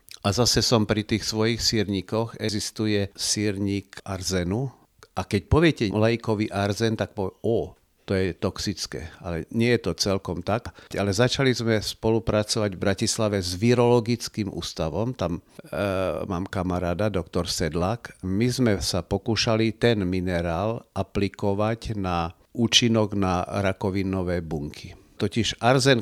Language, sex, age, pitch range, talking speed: Slovak, male, 50-69, 95-110 Hz, 130 wpm